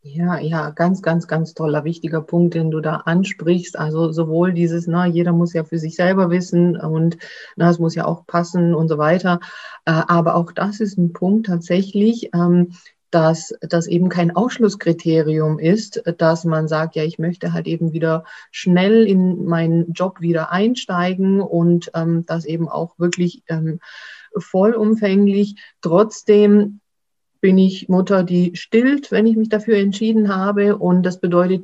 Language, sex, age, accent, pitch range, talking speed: German, female, 30-49, German, 165-195 Hz, 155 wpm